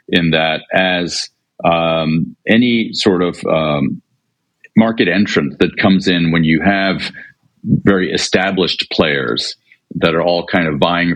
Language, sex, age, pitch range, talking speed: English, male, 50-69, 80-95 Hz, 135 wpm